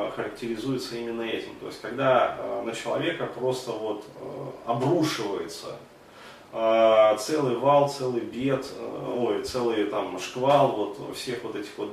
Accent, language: native, Russian